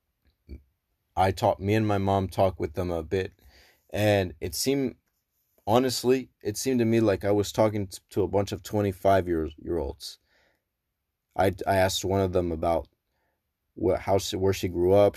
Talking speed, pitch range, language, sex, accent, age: 165 wpm, 90-105 Hz, English, male, American, 30-49